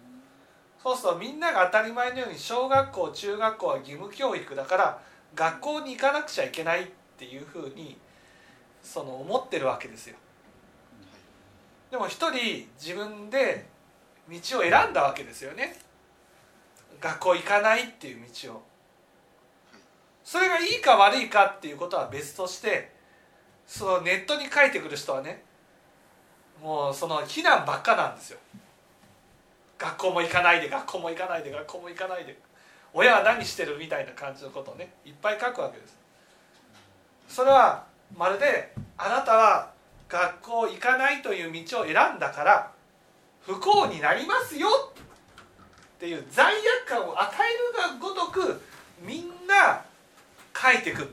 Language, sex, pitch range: Japanese, male, 175-280 Hz